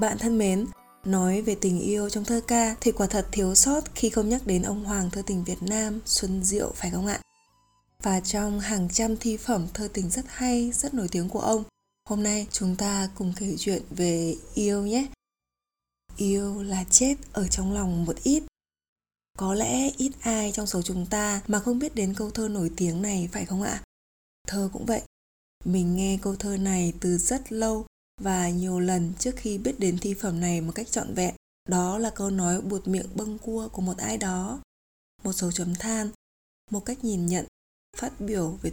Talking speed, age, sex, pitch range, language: 205 wpm, 20-39, female, 185-220 Hz, Vietnamese